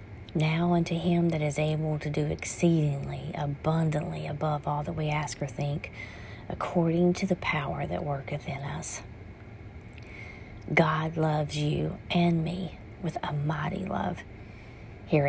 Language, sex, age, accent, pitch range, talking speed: English, female, 40-59, American, 105-160 Hz, 135 wpm